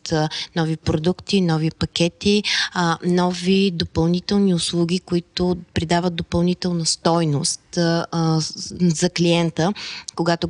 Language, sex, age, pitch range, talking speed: Bulgarian, female, 20-39, 160-180 Hz, 80 wpm